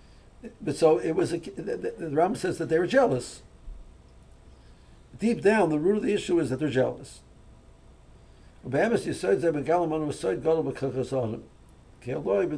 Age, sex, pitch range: 60-79, male, 125-165 Hz